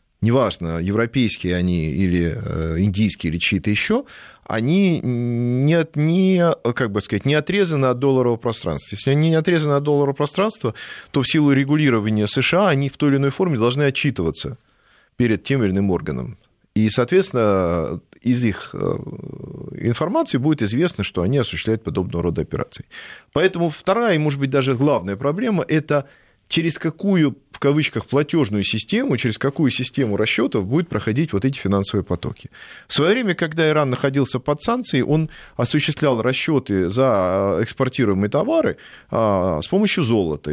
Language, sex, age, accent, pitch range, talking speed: Russian, male, 30-49, native, 100-150 Hz, 140 wpm